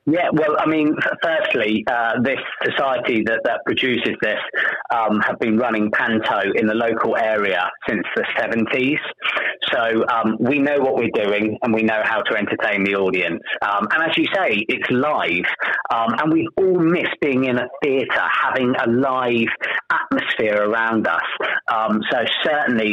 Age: 30-49